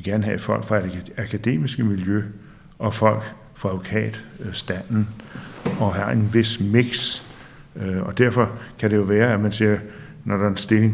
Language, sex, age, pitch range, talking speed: Danish, male, 60-79, 100-120 Hz, 170 wpm